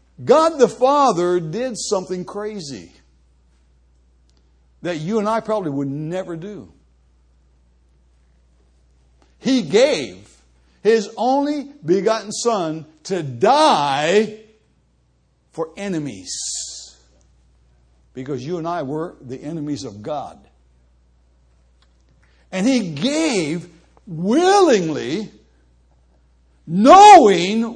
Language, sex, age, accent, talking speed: English, male, 60-79, American, 80 wpm